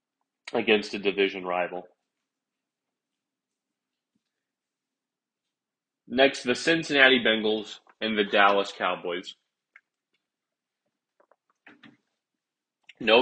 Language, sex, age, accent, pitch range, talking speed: English, male, 30-49, American, 115-140 Hz, 60 wpm